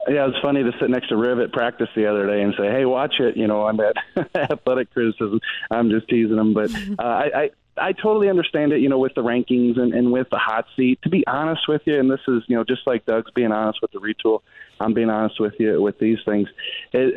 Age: 30-49